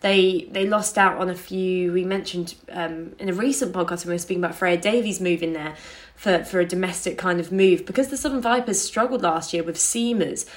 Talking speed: 220 wpm